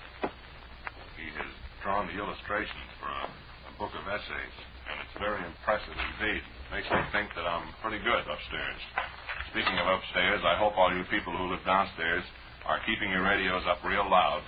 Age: 50-69